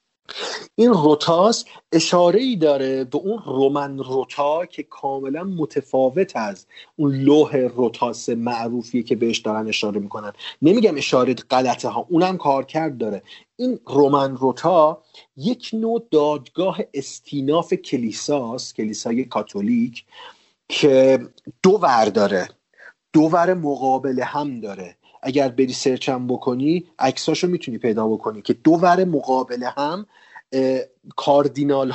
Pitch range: 130-165 Hz